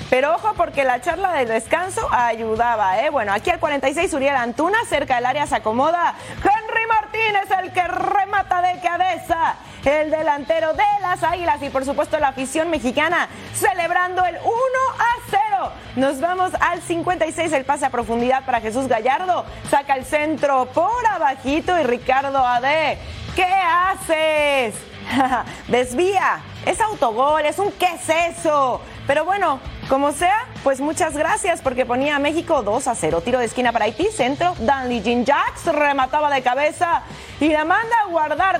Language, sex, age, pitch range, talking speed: Spanish, female, 30-49, 260-360 Hz, 160 wpm